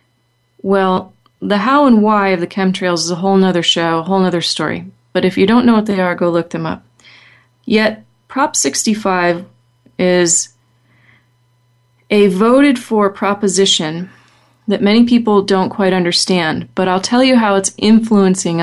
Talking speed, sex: 160 wpm, female